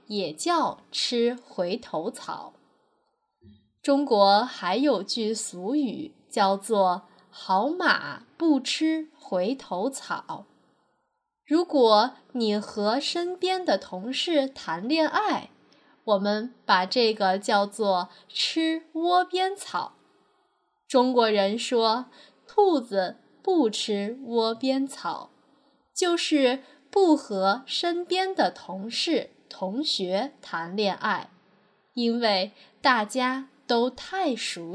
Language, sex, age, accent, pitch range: Chinese, female, 10-29, native, 210-310 Hz